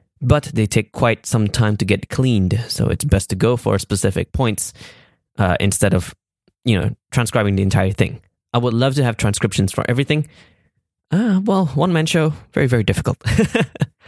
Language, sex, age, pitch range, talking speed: English, male, 20-39, 105-135 Hz, 175 wpm